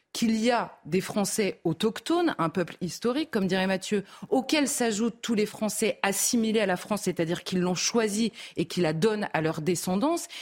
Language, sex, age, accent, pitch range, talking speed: French, female, 30-49, French, 180-230 Hz, 185 wpm